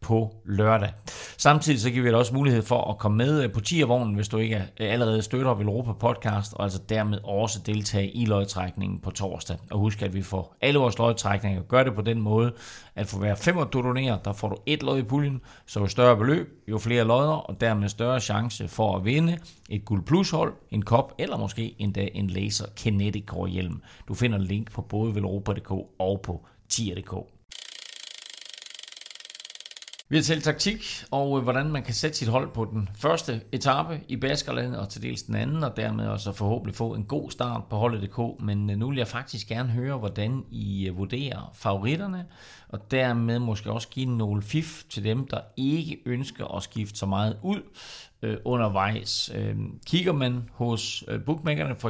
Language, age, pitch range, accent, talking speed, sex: Danish, 30-49, 100-125 Hz, native, 180 wpm, male